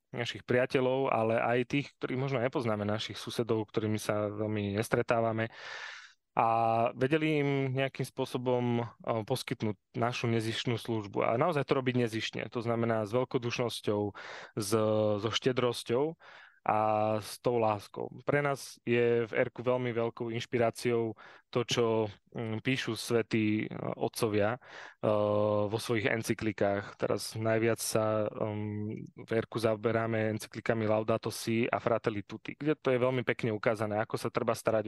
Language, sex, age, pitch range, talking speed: Slovak, male, 20-39, 110-125 Hz, 130 wpm